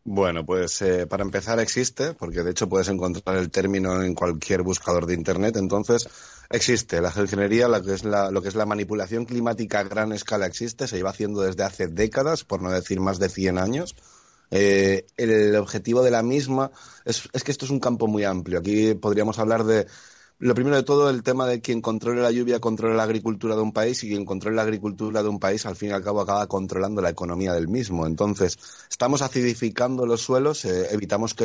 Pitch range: 95-120 Hz